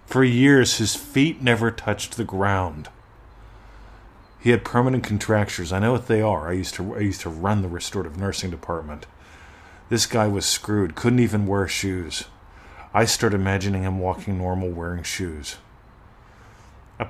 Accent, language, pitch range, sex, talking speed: American, English, 95-110 Hz, male, 160 wpm